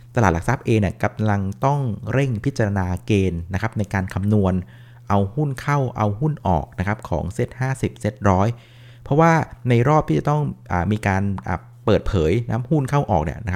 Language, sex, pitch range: Thai, male, 95-125 Hz